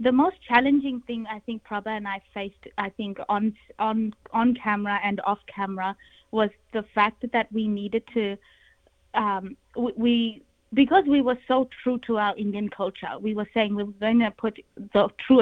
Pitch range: 195-225 Hz